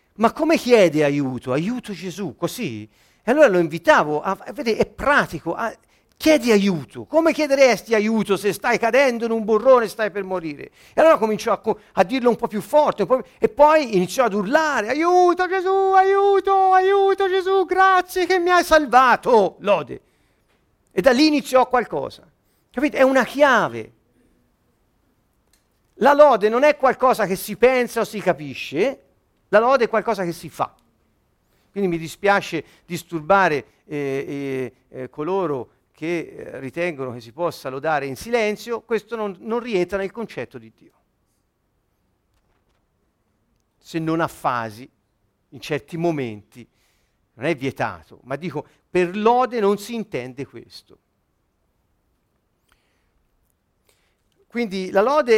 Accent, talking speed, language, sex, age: native, 135 wpm, Italian, male, 50-69